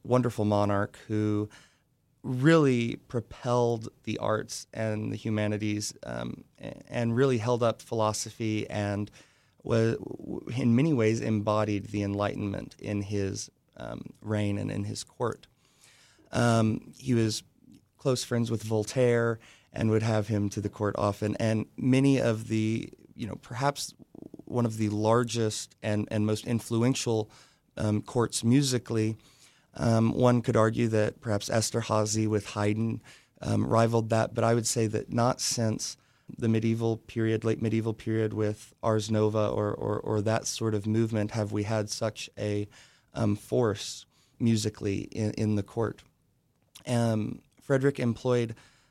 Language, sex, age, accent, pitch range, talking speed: English, male, 30-49, American, 105-120 Hz, 140 wpm